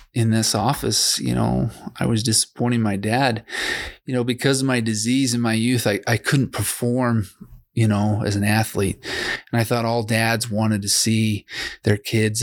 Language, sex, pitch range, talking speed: English, male, 100-115 Hz, 185 wpm